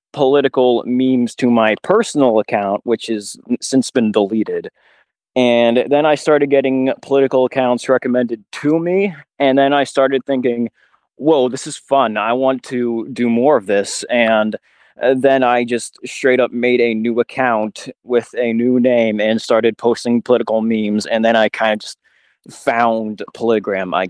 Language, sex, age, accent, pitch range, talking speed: English, male, 20-39, American, 110-130 Hz, 160 wpm